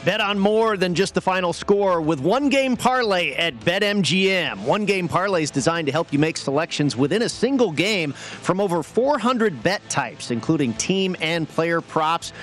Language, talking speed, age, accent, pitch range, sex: English, 185 wpm, 40-59, American, 145-190 Hz, male